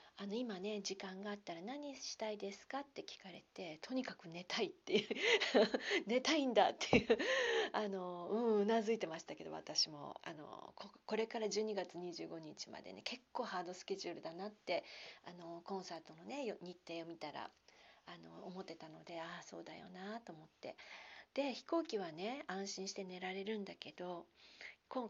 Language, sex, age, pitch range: Japanese, female, 40-59, 190-280 Hz